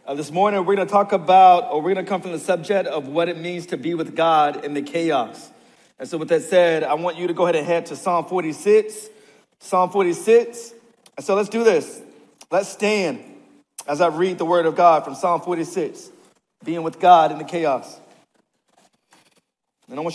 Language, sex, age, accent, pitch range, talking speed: English, male, 40-59, American, 145-185 Hz, 210 wpm